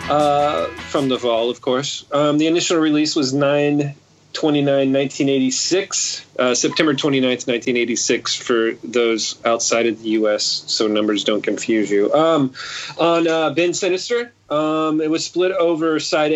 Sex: male